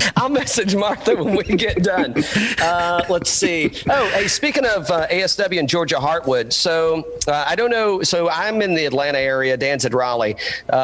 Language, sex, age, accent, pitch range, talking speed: English, male, 40-59, American, 120-155 Hz, 185 wpm